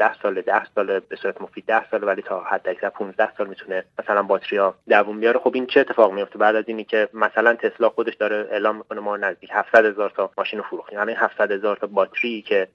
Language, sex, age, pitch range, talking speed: Persian, male, 30-49, 105-130 Hz, 225 wpm